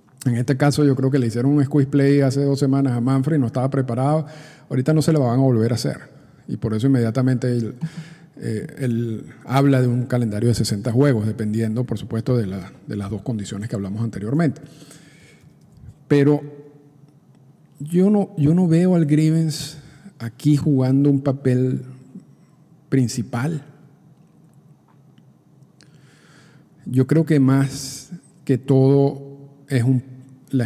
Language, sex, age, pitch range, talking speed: Spanish, male, 50-69, 125-150 Hz, 150 wpm